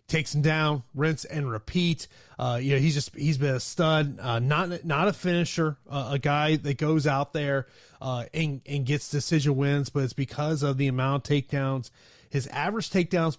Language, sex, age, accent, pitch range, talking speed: English, male, 30-49, American, 130-160 Hz, 195 wpm